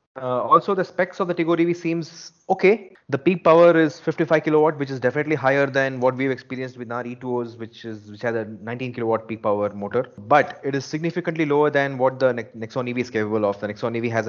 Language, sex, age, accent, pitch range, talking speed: English, male, 30-49, Indian, 115-145 Hz, 230 wpm